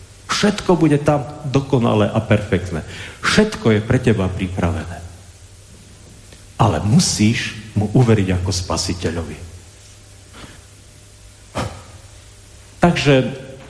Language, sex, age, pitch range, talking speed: Slovak, male, 50-69, 100-125 Hz, 80 wpm